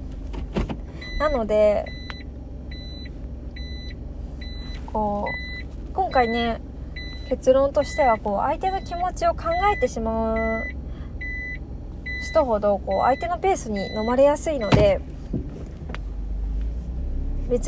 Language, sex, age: Japanese, female, 20-39